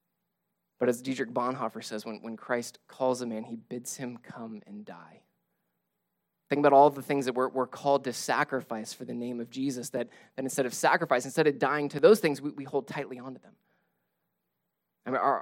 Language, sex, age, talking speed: English, male, 20-39, 205 wpm